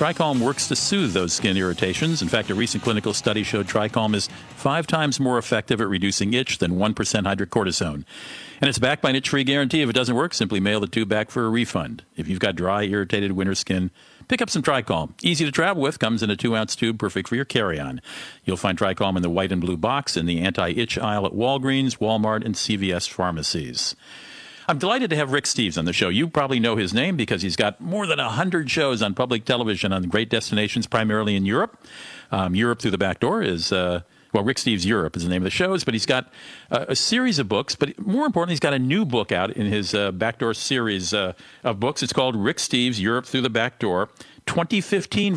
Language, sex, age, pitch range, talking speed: English, male, 50-69, 105-140 Hz, 225 wpm